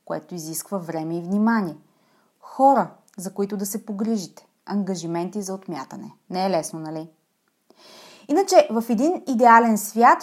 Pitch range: 185-255 Hz